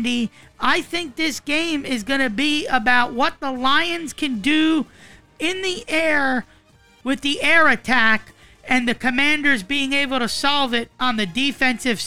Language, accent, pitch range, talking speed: English, American, 235-280 Hz, 160 wpm